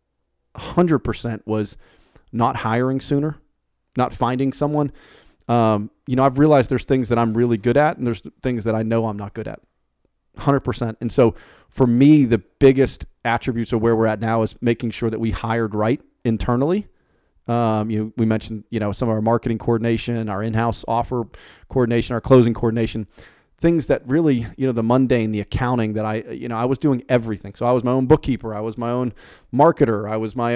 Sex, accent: male, American